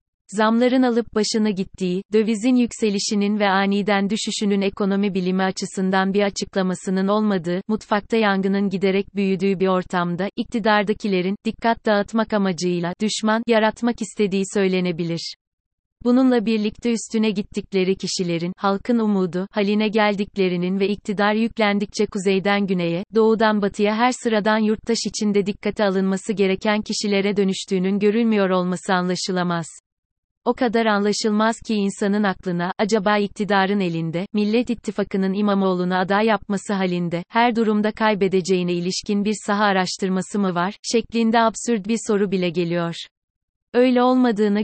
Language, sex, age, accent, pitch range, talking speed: Turkish, female, 30-49, native, 190-215 Hz, 120 wpm